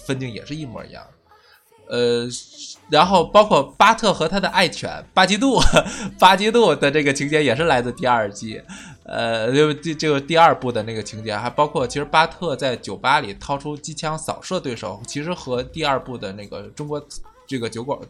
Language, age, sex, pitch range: Chinese, 20-39, male, 115-160 Hz